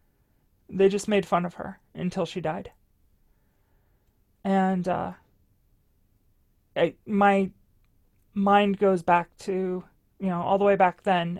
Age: 30-49